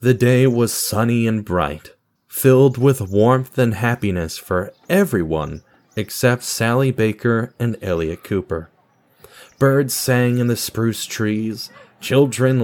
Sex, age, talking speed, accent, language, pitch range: male, 30-49, 125 wpm, American, English, 95-130 Hz